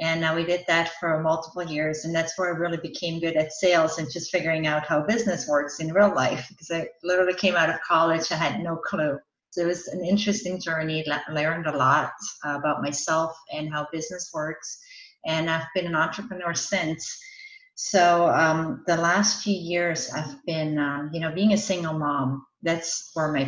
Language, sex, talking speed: English, female, 195 wpm